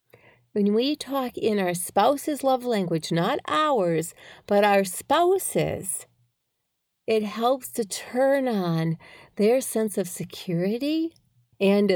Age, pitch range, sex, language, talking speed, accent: 40-59, 170-250 Hz, female, English, 115 wpm, American